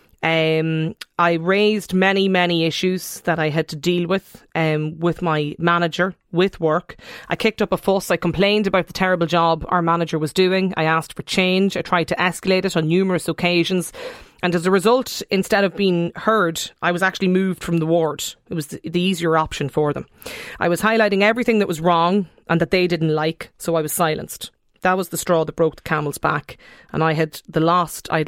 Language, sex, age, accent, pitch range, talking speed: English, female, 30-49, Irish, 160-190 Hz, 210 wpm